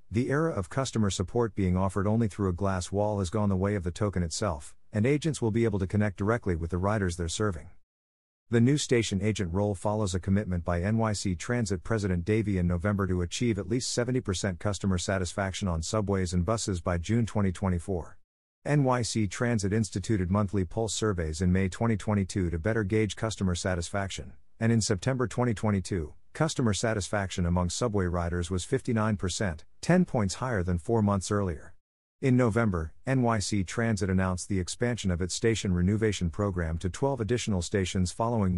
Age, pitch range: 50-69, 90-110 Hz